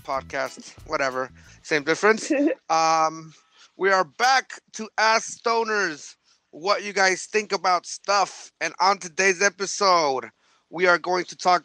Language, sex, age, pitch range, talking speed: English, male, 30-49, 155-190 Hz, 135 wpm